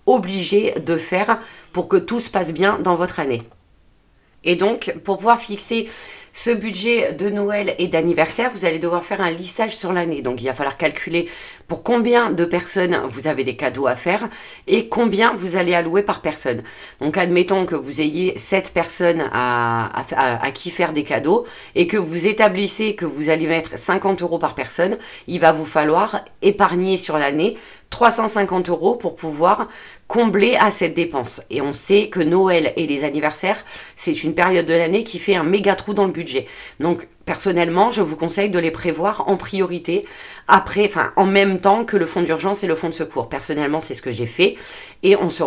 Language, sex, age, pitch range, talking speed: French, female, 30-49, 160-200 Hz, 200 wpm